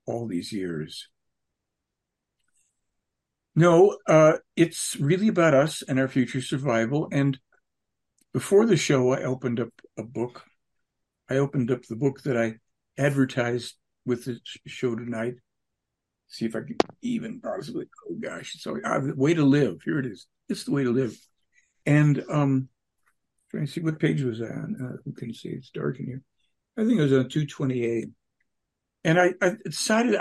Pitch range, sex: 120-165 Hz, male